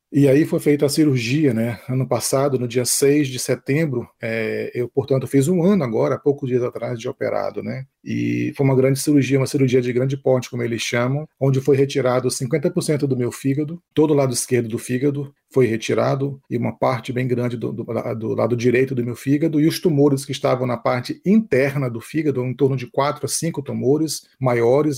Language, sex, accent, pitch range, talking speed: Portuguese, male, Brazilian, 125-150 Hz, 205 wpm